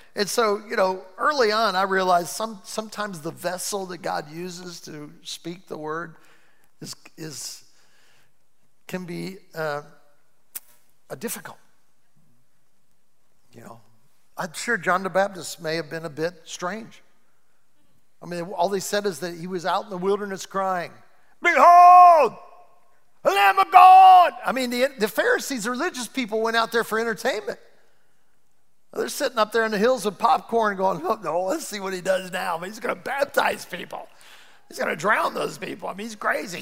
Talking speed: 170 wpm